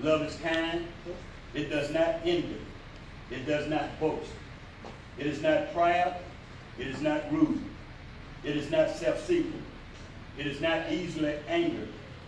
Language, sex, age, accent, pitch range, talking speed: English, male, 60-79, American, 135-175 Hz, 135 wpm